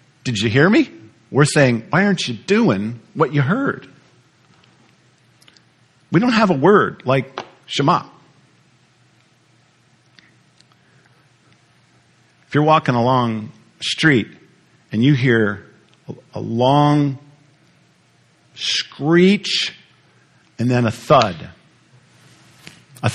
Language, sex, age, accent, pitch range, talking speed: English, male, 50-69, American, 125-160 Hz, 95 wpm